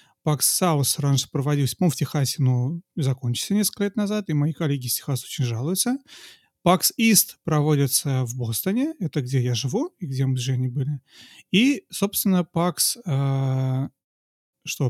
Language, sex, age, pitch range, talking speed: Russian, male, 30-49, 130-165 Hz, 155 wpm